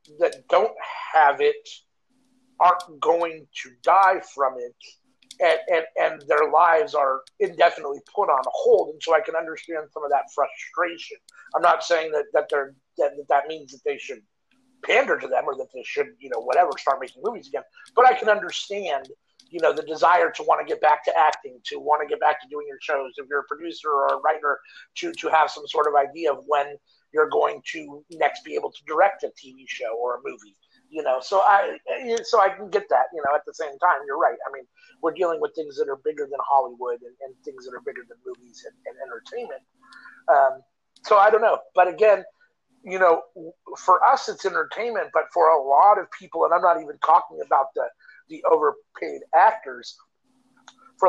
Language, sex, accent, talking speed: English, male, American, 210 wpm